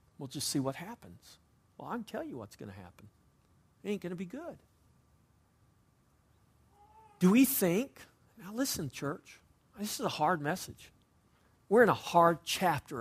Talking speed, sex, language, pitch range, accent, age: 165 wpm, male, English, 120-195 Hz, American, 50-69